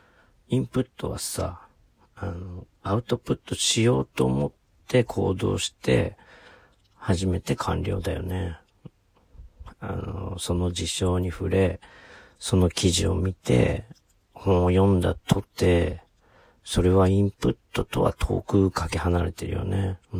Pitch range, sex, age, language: 85-100 Hz, male, 40-59, Japanese